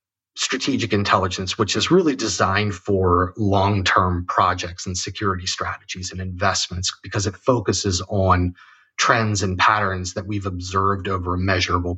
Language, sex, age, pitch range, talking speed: English, male, 30-49, 95-110 Hz, 135 wpm